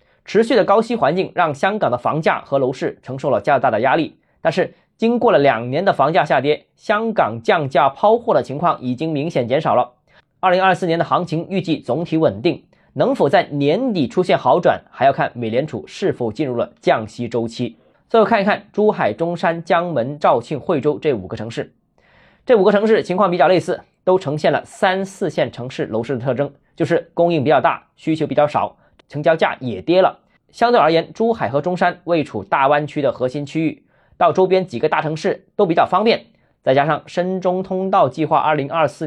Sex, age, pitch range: male, 20-39, 145-185 Hz